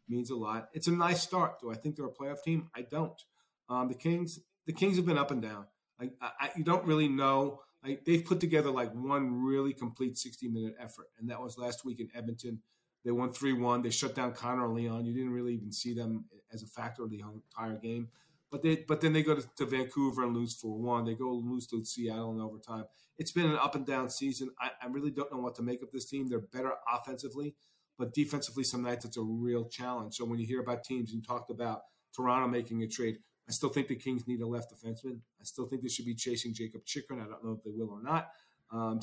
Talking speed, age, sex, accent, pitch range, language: 250 wpm, 40-59, male, American, 115-140 Hz, English